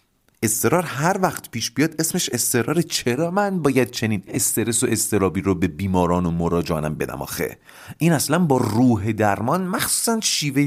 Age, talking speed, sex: 30-49, 155 wpm, male